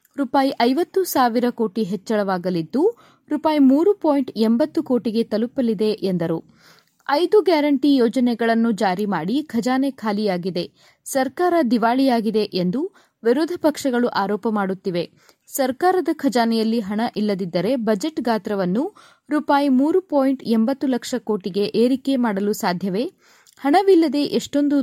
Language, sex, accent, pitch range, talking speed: Kannada, female, native, 210-280 Hz, 85 wpm